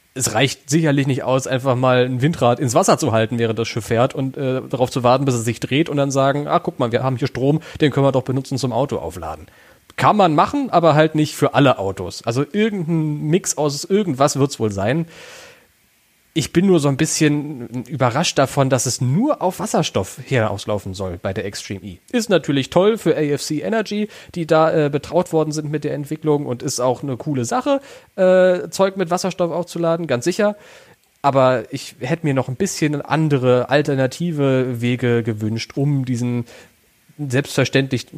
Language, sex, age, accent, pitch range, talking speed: German, male, 30-49, German, 120-160 Hz, 195 wpm